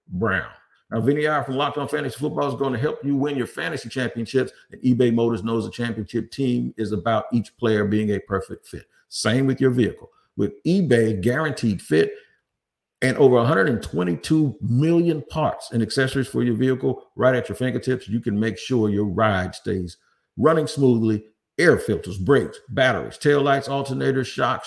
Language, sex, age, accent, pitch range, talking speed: English, male, 50-69, American, 105-140 Hz, 170 wpm